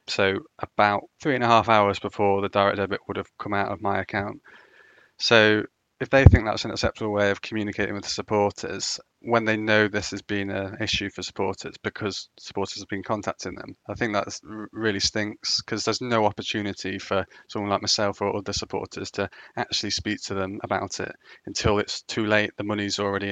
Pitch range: 100-110 Hz